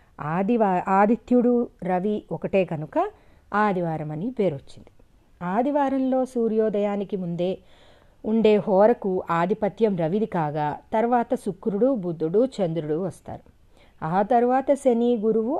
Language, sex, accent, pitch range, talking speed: Telugu, female, native, 180-245 Hz, 100 wpm